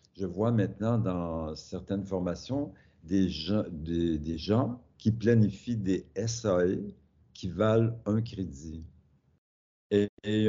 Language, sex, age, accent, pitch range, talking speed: French, male, 60-79, French, 90-110 Hz, 120 wpm